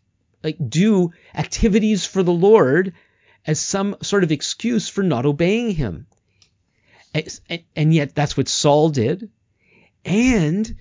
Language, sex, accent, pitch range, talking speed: English, male, American, 145-195 Hz, 130 wpm